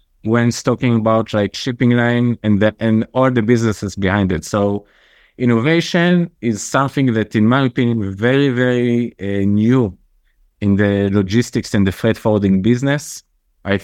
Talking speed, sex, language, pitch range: 155 wpm, male, English, 105-125 Hz